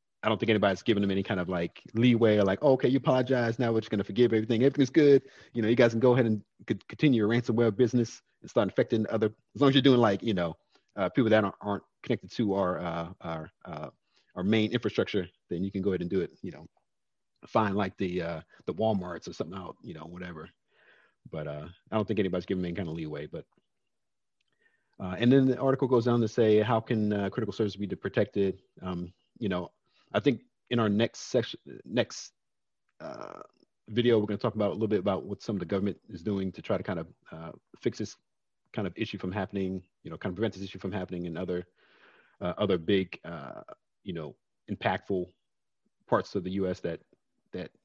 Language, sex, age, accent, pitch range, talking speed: English, male, 40-59, American, 90-115 Hz, 225 wpm